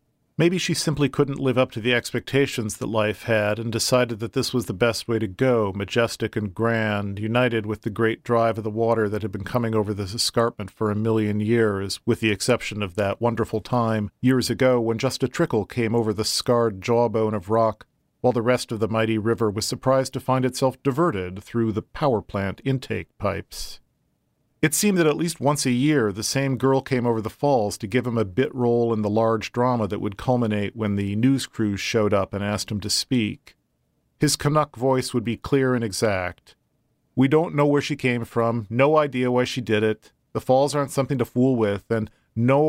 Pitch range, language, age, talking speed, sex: 110-130 Hz, English, 40-59, 215 wpm, male